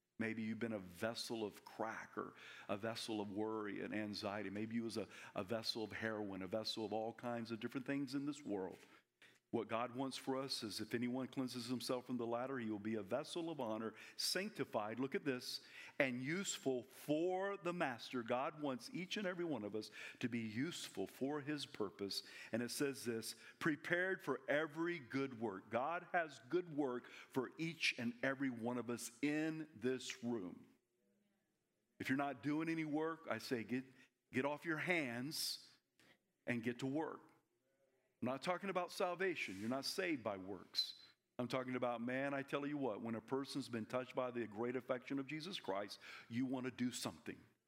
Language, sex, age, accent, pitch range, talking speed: English, male, 50-69, American, 115-145 Hz, 190 wpm